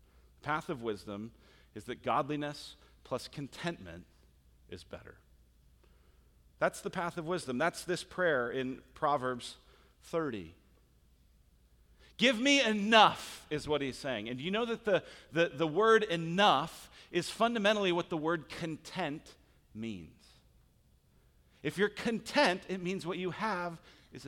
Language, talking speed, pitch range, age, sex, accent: English, 135 wpm, 100-170 Hz, 40-59, male, American